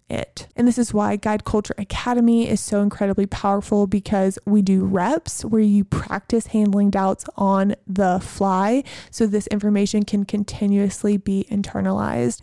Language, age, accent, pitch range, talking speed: English, 20-39, American, 195-225 Hz, 150 wpm